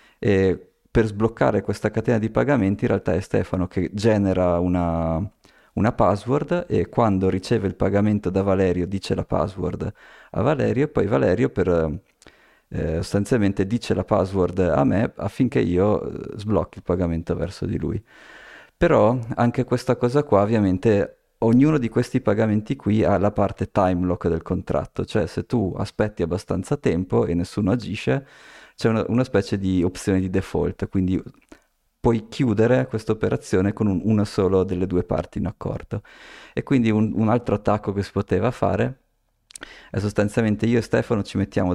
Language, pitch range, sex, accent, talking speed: Italian, 90-110 Hz, male, native, 160 wpm